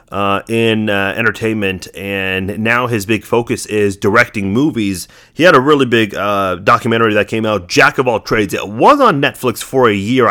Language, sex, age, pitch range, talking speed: English, male, 30-49, 110-130 Hz, 190 wpm